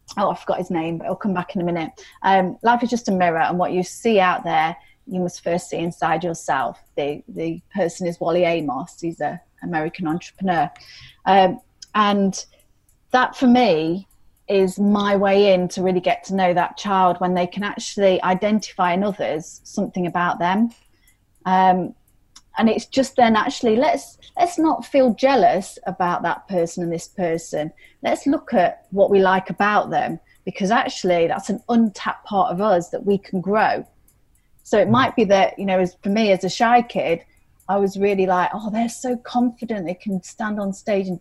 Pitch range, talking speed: 180-230 Hz, 190 wpm